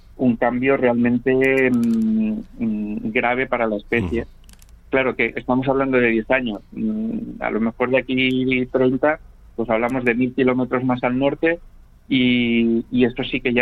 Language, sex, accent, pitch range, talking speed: Spanish, male, Spanish, 115-140 Hz, 160 wpm